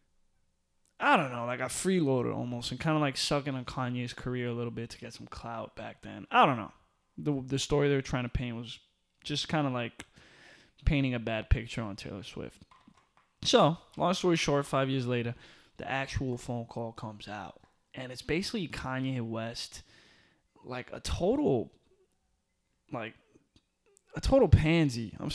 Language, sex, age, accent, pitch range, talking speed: English, male, 20-39, American, 120-150 Hz, 175 wpm